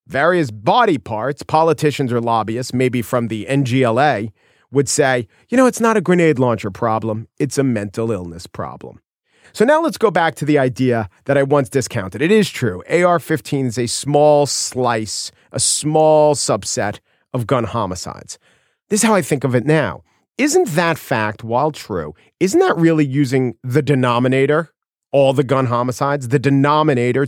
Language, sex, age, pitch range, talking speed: English, male, 40-59, 120-155 Hz, 165 wpm